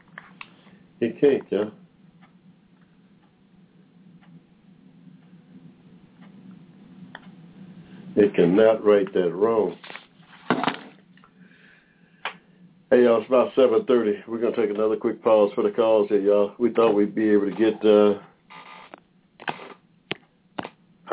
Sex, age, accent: male, 60-79, American